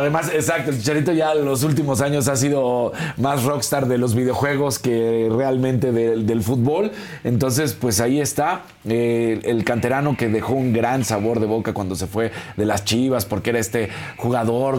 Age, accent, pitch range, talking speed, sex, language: 40-59, Mexican, 110-140 Hz, 180 wpm, male, Spanish